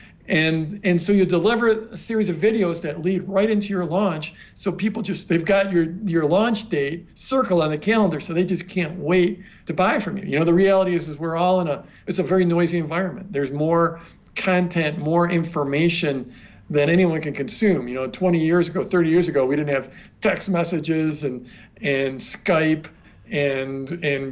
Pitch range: 150-190 Hz